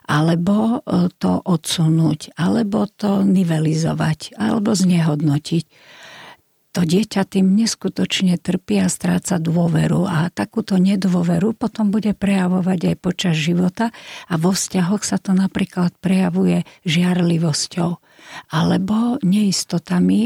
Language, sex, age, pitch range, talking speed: Slovak, female, 50-69, 165-200 Hz, 105 wpm